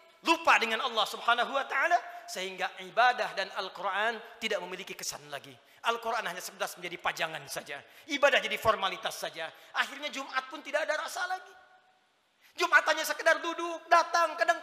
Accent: native